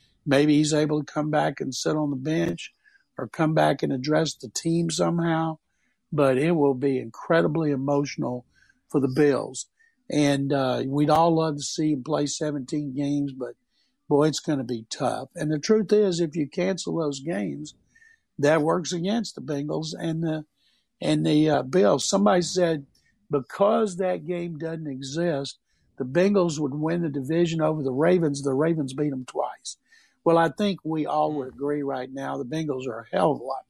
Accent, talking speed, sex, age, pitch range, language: American, 185 wpm, male, 60-79, 140-170 Hz, English